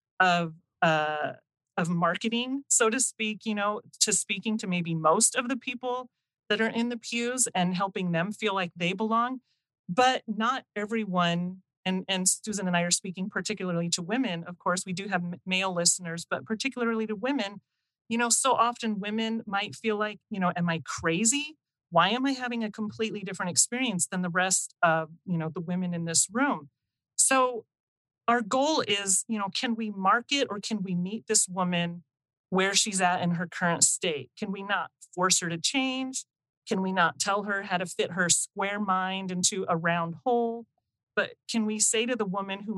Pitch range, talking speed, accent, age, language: 175-220 Hz, 190 wpm, American, 30-49, English